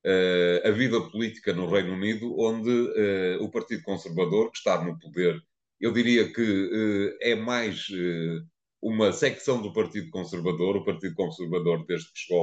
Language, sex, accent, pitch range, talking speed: Portuguese, male, Portuguese, 85-105 Hz, 145 wpm